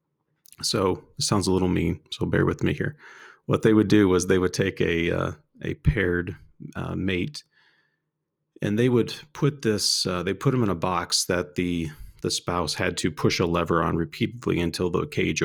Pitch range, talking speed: 85-110 Hz, 200 wpm